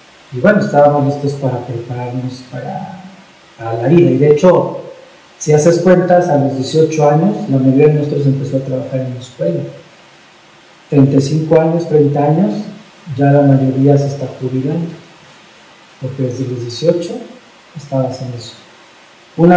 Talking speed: 145 wpm